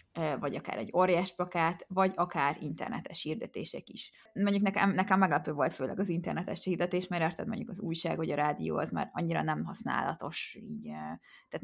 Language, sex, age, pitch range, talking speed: Hungarian, female, 20-39, 160-190 Hz, 175 wpm